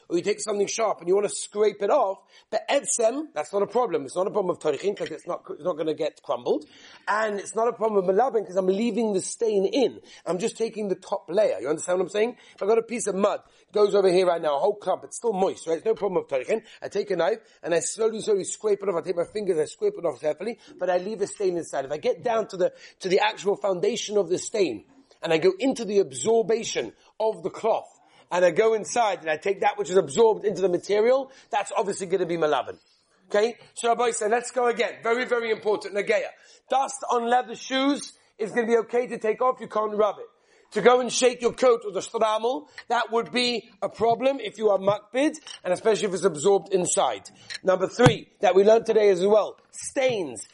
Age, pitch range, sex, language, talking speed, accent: 40-59, 195-240 Hz, male, English, 245 wpm, British